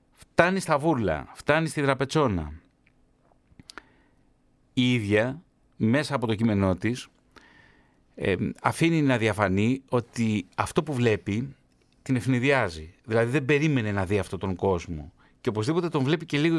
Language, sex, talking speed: Greek, male, 135 wpm